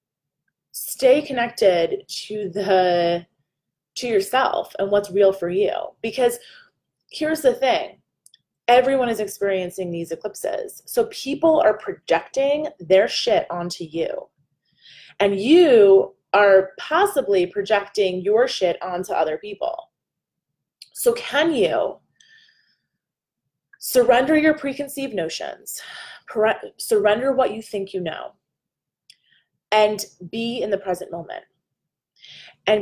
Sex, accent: female, American